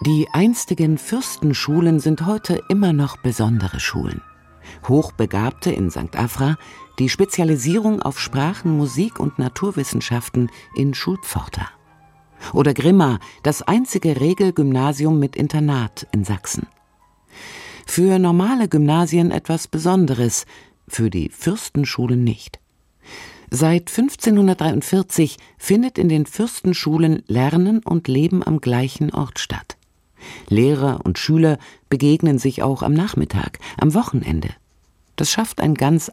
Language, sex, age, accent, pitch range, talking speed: German, female, 50-69, German, 125-175 Hz, 110 wpm